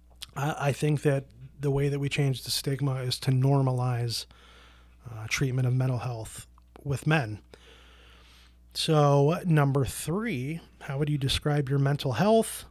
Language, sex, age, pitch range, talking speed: English, male, 30-49, 125-150 Hz, 140 wpm